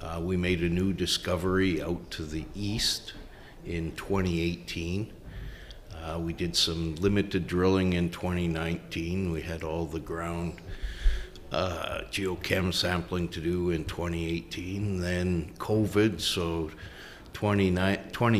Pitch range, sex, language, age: 85-100 Hz, male, English, 50-69